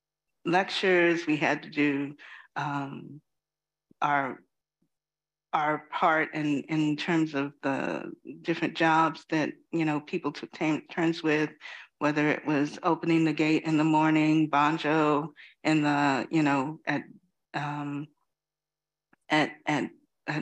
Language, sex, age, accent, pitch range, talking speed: English, female, 50-69, American, 145-165 Hz, 120 wpm